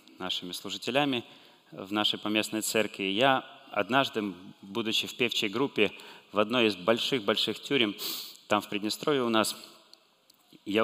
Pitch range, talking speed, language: 95-115 Hz, 135 wpm, Russian